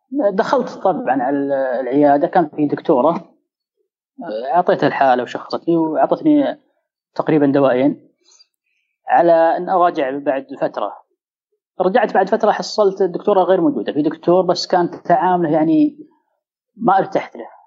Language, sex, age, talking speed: Arabic, female, 20-39, 120 wpm